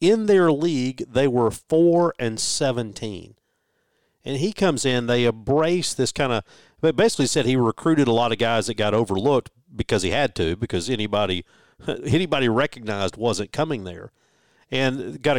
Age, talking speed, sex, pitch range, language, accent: 40-59, 165 wpm, male, 105-135 Hz, English, American